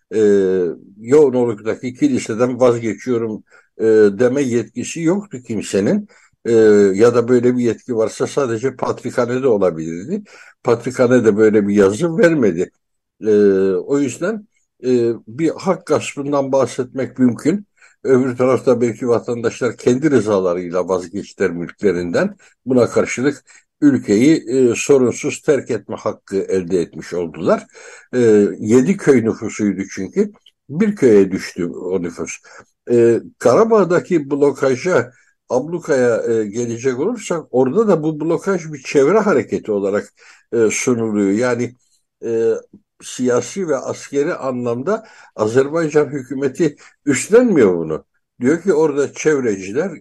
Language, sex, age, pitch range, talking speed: Turkish, male, 60-79, 110-155 Hz, 105 wpm